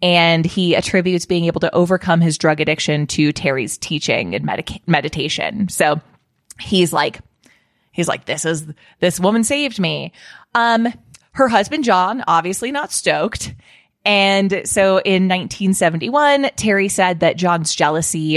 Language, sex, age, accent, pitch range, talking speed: English, female, 20-39, American, 160-210 Hz, 140 wpm